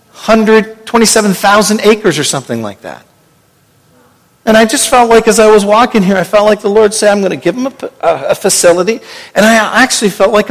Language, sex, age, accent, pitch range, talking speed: English, male, 50-69, American, 160-215 Hz, 205 wpm